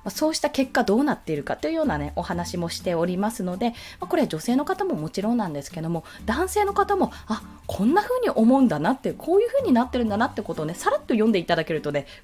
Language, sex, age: Japanese, female, 20-39